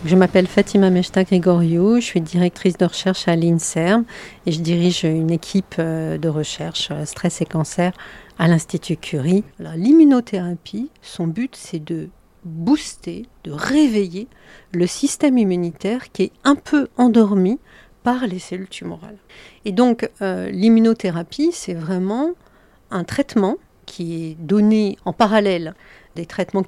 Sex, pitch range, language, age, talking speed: female, 175-230 Hz, French, 40-59, 135 wpm